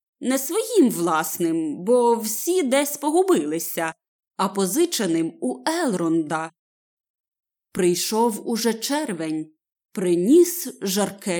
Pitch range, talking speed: 195-285 Hz, 85 wpm